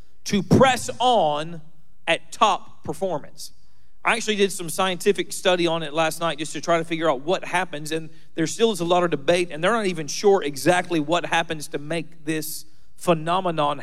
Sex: male